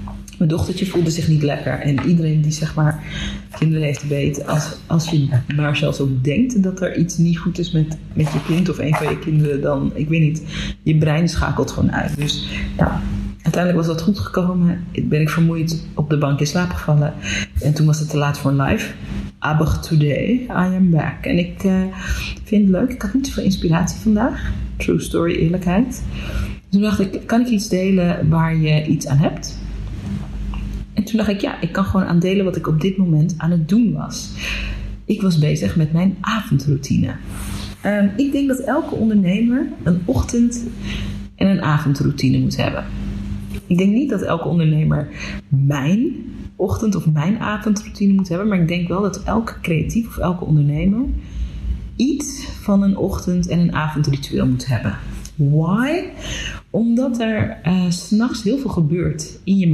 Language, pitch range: Dutch, 150-200 Hz